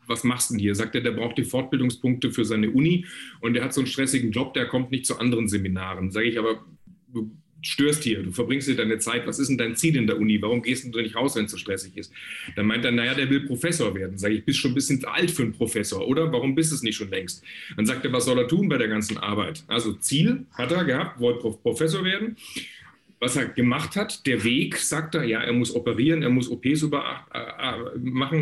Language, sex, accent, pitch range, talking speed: German, male, German, 115-155 Hz, 250 wpm